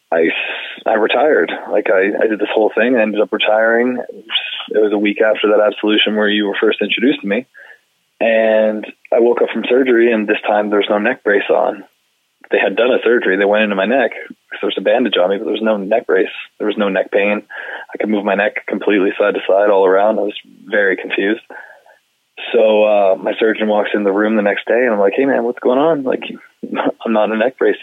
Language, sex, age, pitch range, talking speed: English, male, 20-39, 105-125 Hz, 240 wpm